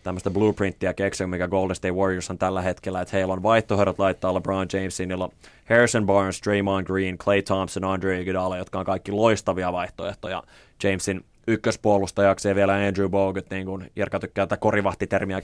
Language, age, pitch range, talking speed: Finnish, 20-39, 95-105 Hz, 160 wpm